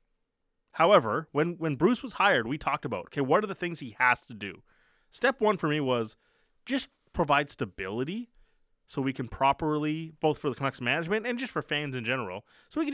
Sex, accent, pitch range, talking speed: male, American, 120-170 Hz, 205 wpm